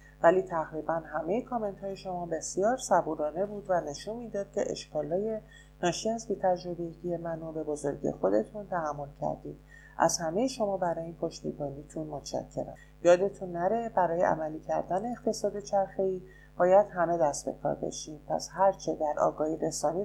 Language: Persian